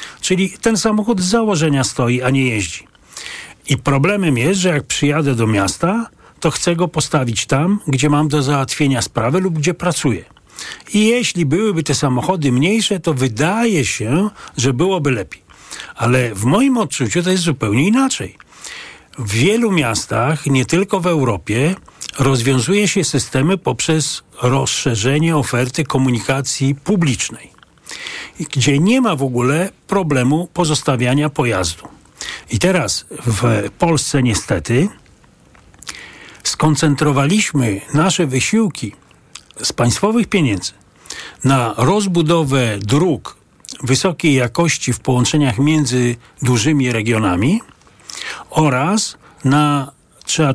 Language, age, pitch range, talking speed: Polish, 40-59, 125-180 Hz, 115 wpm